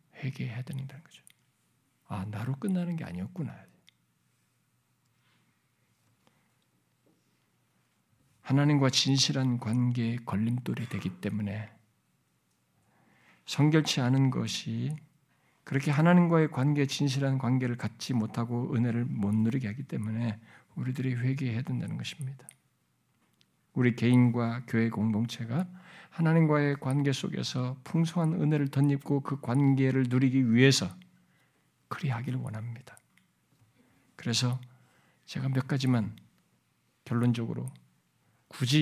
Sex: male